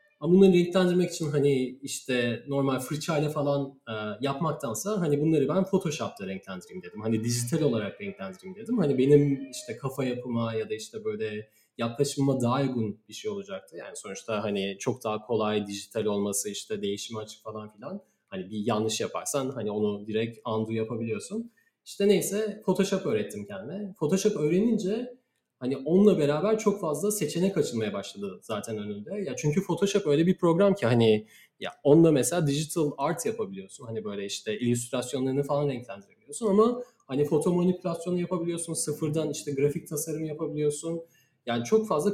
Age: 30-49